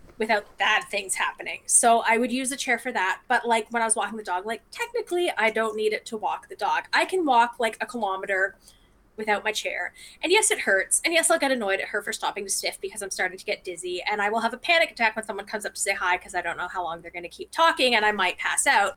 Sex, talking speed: female, 285 wpm